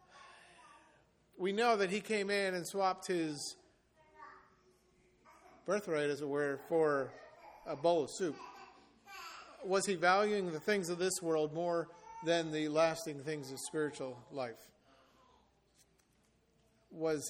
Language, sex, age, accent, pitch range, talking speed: English, male, 50-69, American, 155-205 Hz, 120 wpm